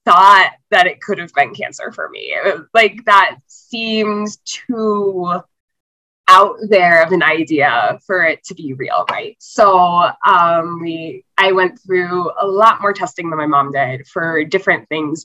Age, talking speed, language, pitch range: 20-39, 160 wpm, English, 160-215 Hz